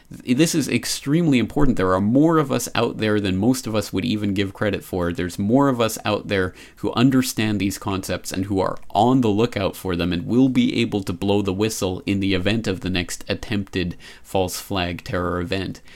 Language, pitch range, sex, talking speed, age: English, 90-110 Hz, male, 215 wpm, 30-49